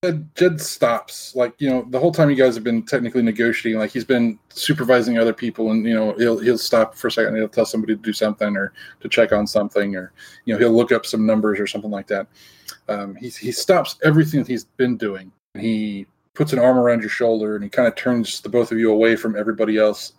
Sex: male